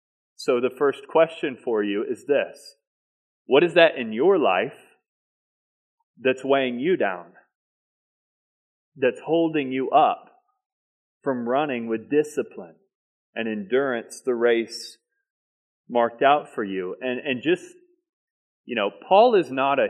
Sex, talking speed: male, 130 wpm